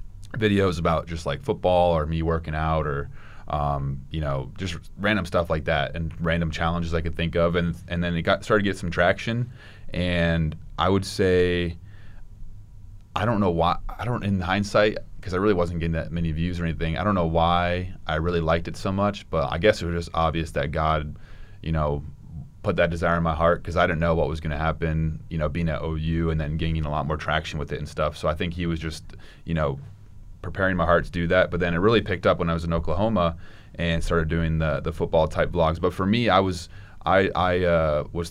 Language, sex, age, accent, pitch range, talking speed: English, male, 30-49, American, 80-95 Hz, 235 wpm